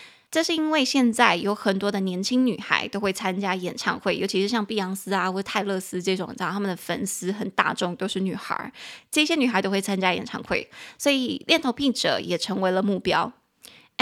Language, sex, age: Chinese, female, 20-39